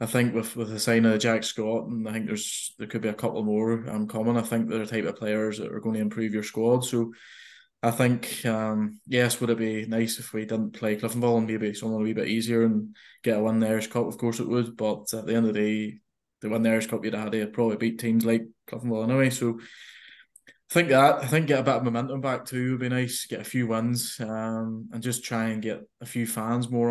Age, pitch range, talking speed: 20-39, 110-120 Hz, 270 wpm